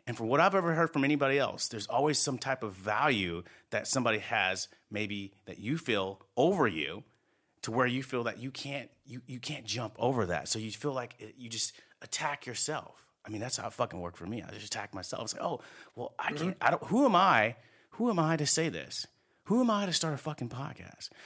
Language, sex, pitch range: English, male, 100-150 Hz